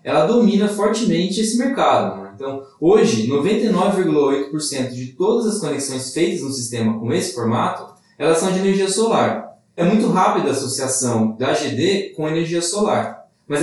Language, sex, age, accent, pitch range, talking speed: Portuguese, male, 20-39, Brazilian, 140-200 Hz, 155 wpm